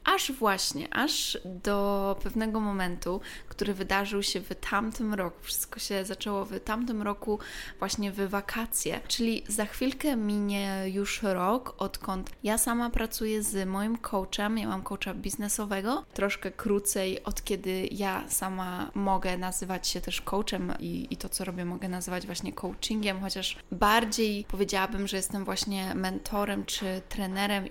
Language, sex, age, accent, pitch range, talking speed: Polish, female, 20-39, native, 190-215 Hz, 145 wpm